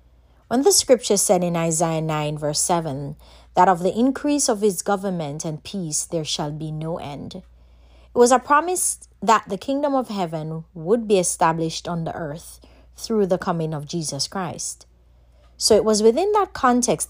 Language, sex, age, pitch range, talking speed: English, female, 30-49, 150-200 Hz, 175 wpm